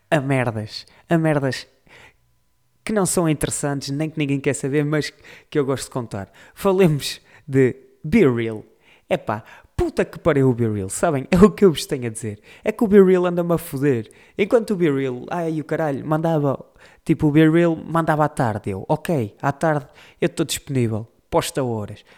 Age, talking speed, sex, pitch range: 20-39, 180 wpm, male, 130-185 Hz